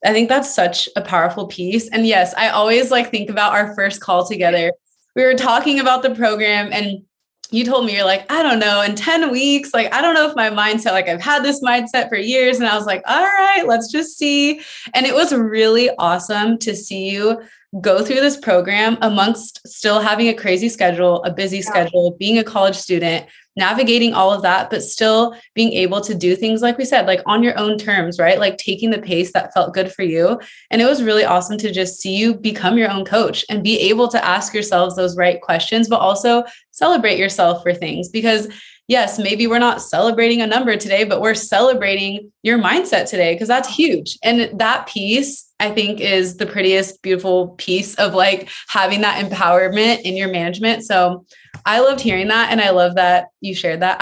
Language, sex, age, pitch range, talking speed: English, female, 20-39, 185-230 Hz, 210 wpm